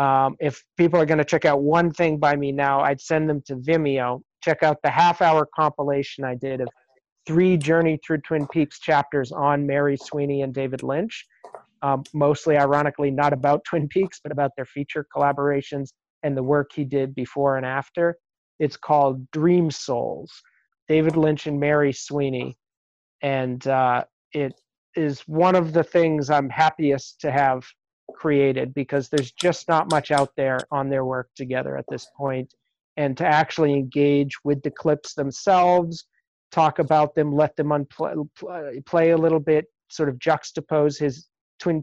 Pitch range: 140-155 Hz